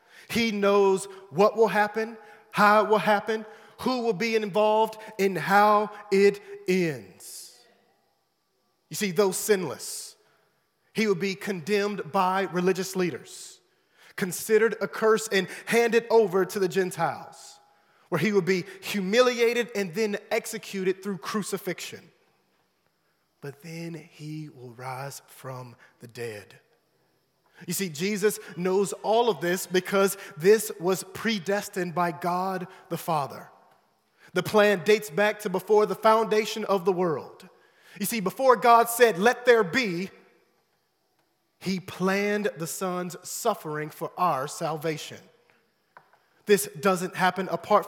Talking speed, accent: 125 wpm, American